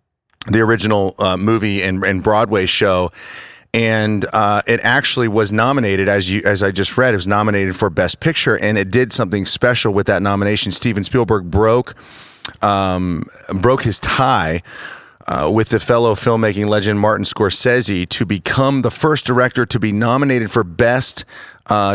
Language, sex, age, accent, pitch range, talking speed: English, male, 30-49, American, 95-115 Hz, 165 wpm